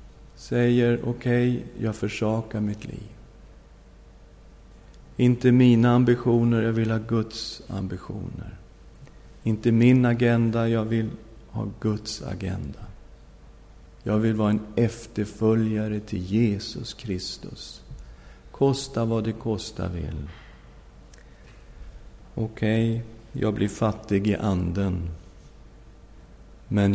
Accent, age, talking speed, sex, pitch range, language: native, 50-69, 100 wpm, male, 90-115 Hz, Swedish